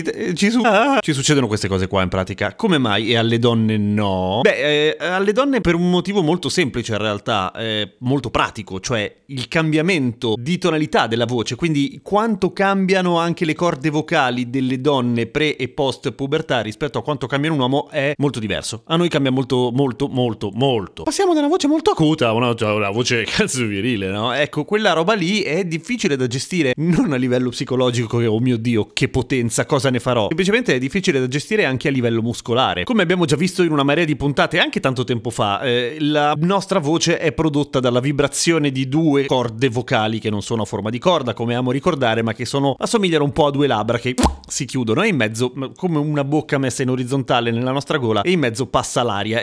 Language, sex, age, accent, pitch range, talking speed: Italian, male, 30-49, native, 120-165 Hz, 210 wpm